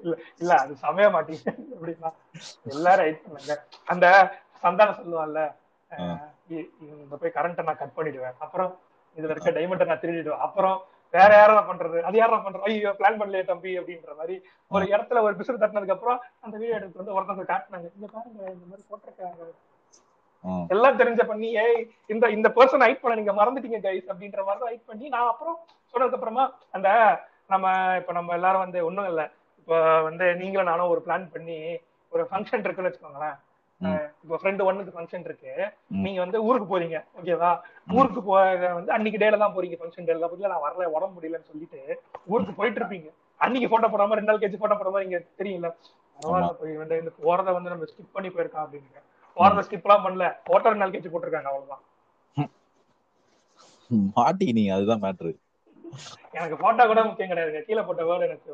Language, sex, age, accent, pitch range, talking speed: Tamil, male, 30-49, native, 165-215 Hz, 95 wpm